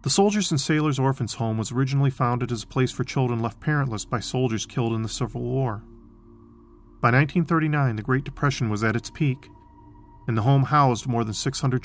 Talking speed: 200 wpm